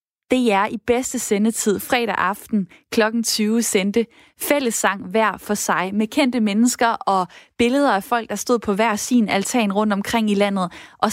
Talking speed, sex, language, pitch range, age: 175 wpm, female, Danish, 205-255 Hz, 20-39